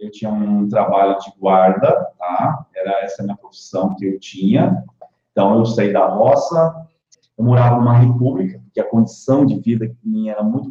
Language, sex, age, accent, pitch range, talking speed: Portuguese, male, 40-59, Brazilian, 105-125 Hz, 185 wpm